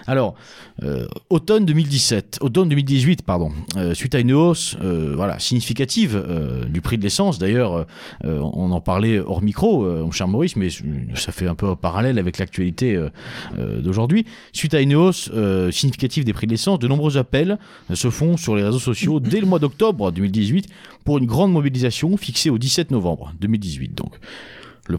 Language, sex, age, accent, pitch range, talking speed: French, male, 40-59, French, 100-155 Hz, 190 wpm